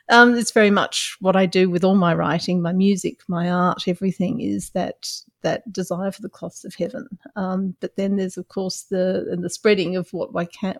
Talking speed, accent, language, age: 215 wpm, Australian, English, 50-69